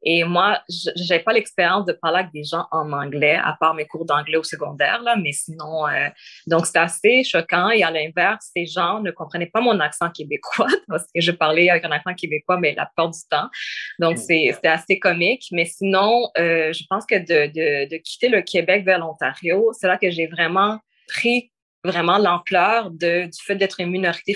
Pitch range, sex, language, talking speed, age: 165-195 Hz, female, French, 205 wpm, 20-39